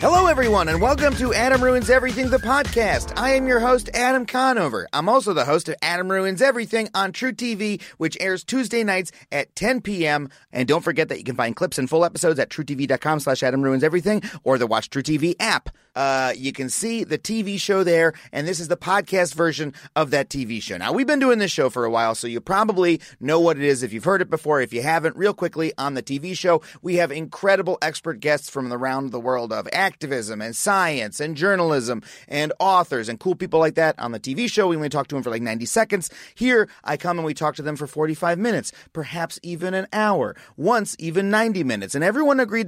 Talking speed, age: 230 wpm, 30-49